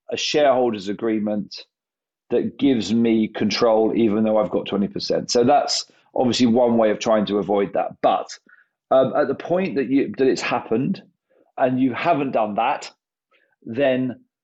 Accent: British